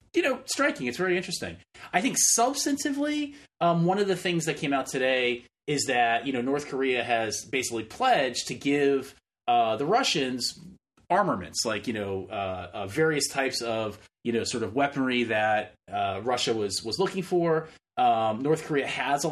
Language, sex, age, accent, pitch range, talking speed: English, male, 30-49, American, 120-170 Hz, 180 wpm